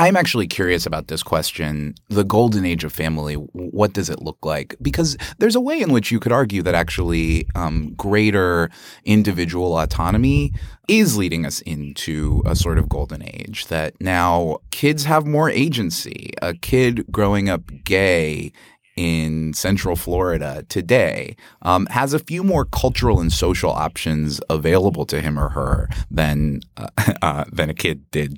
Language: English